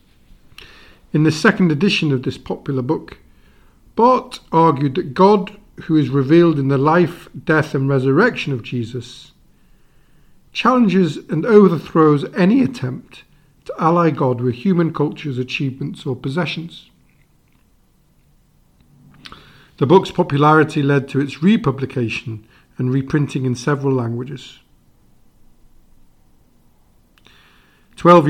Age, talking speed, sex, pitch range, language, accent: 50-69, 105 wpm, male, 130-170 Hz, English, British